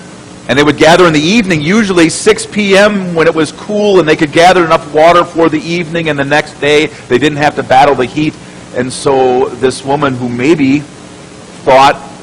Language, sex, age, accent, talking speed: English, male, 40-59, American, 205 wpm